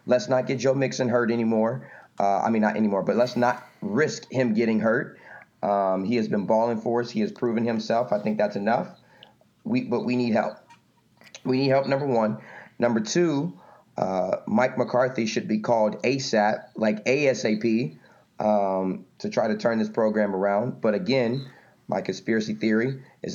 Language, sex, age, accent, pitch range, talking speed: English, male, 30-49, American, 105-120 Hz, 175 wpm